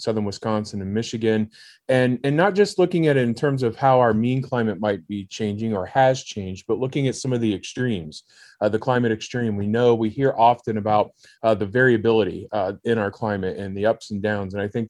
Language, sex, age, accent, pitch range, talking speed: English, male, 20-39, American, 105-130 Hz, 225 wpm